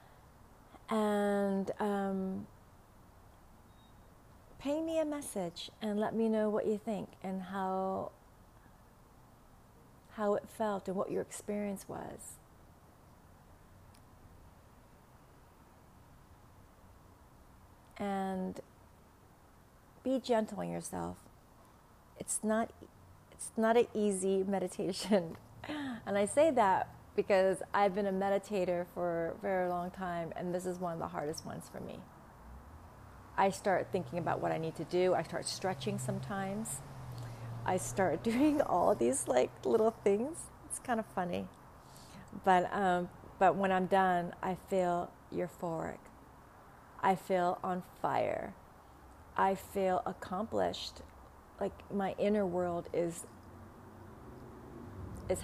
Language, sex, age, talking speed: English, female, 30-49, 115 wpm